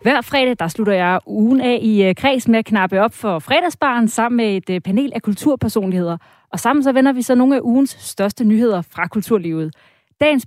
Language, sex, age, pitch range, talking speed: Danish, female, 30-49, 185-250 Hz, 200 wpm